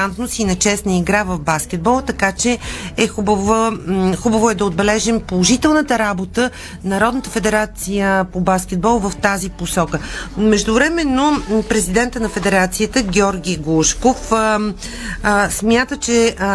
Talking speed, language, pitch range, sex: 125 wpm, Bulgarian, 190-235 Hz, female